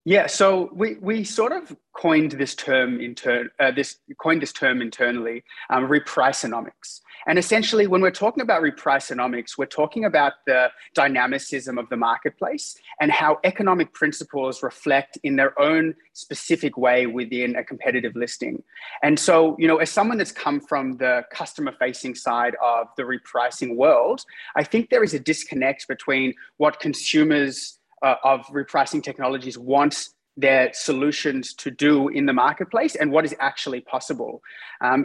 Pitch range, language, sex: 125-160 Hz, English, male